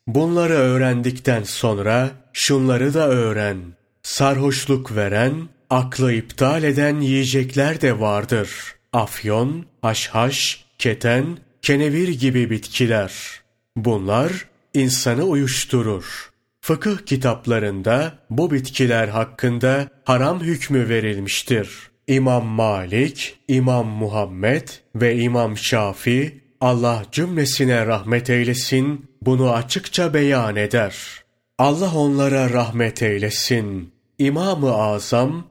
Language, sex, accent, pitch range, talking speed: Turkish, male, native, 115-140 Hz, 90 wpm